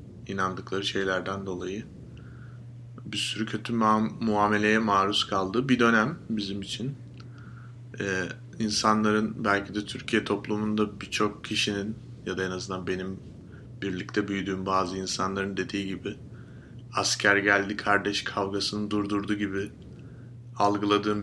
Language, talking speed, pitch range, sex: Turkish, 105 wpm, 100-120 Hz, male